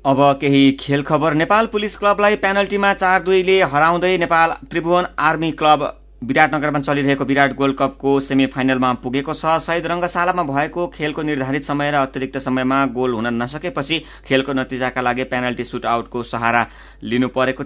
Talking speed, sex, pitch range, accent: 110 wpm, male, 125-155 Hz, Indian